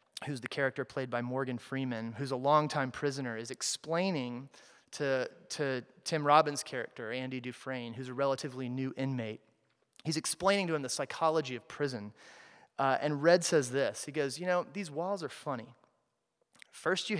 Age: 30-49